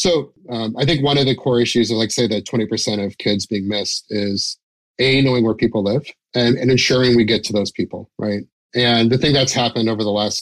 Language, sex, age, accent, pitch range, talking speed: English, male, 30-49, American, 105-125 Hz, 235 wpm